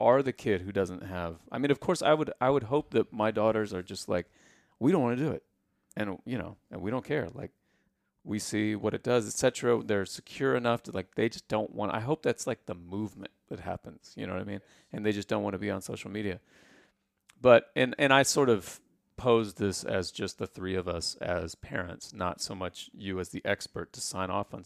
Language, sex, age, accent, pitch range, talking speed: English, male, 30-49, American, 95-120 Hz, 245 wpm